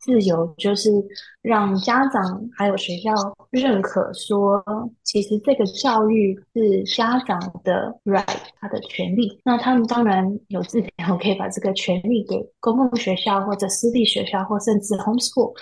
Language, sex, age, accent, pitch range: Chinese, female, 20-39, native, 195-240 Hz